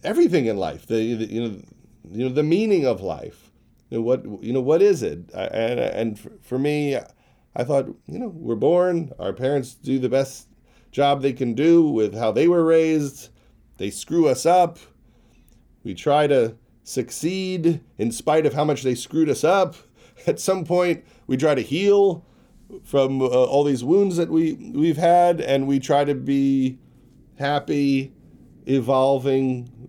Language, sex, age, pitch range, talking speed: English, male, 40-59, 115-150 Hz, 175 wpm